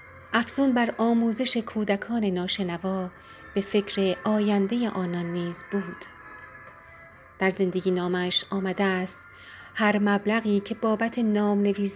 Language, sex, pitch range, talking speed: Persian, female, 185-220 Hz, 105 wpm